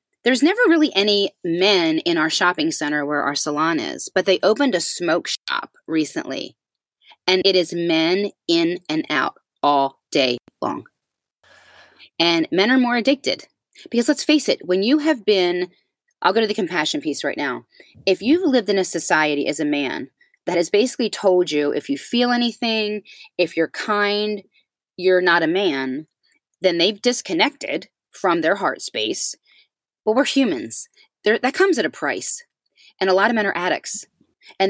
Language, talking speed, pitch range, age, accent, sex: English, 170 wpm, 160-215 Hz, 30-49, American, female